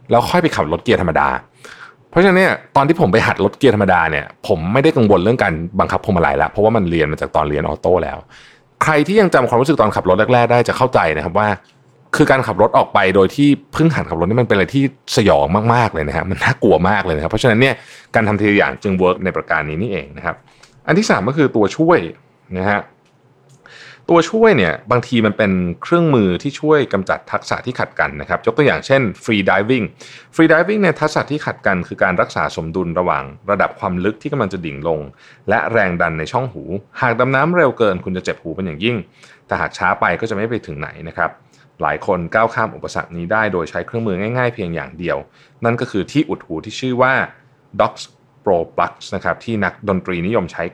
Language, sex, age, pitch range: Thai, male, 30-49, 95-140 Hz